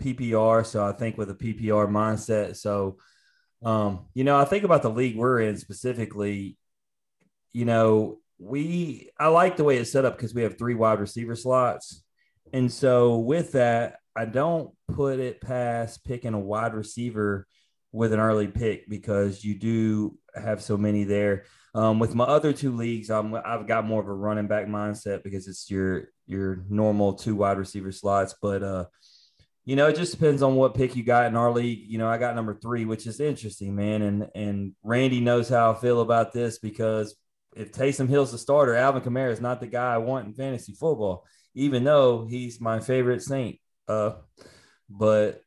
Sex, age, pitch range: male, 30-49, 105-125 Hz